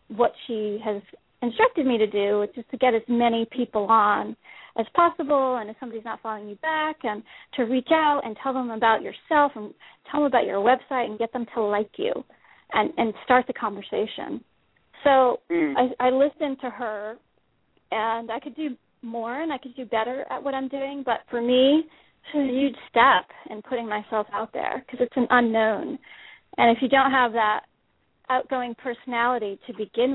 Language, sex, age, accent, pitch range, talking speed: English, female, 40-59, American, 225-270 Hz, 195 wpm